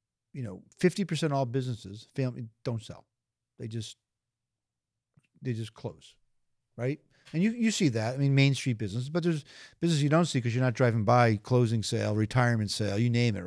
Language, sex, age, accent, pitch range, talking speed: English, male, 50-69, American, 120-160 Hz, 195 wpm